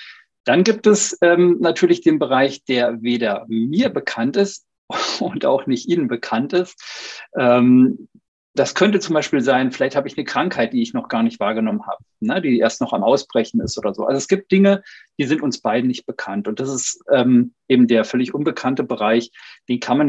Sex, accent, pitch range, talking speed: male, German, 120-190 Hz, 195 wpm